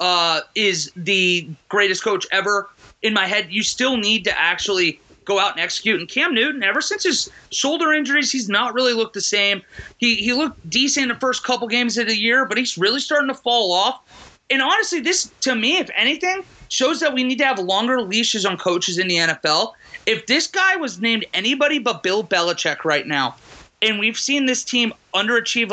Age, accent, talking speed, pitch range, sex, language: 30-49, American, 205 wpm, 205-275 Hz, male, English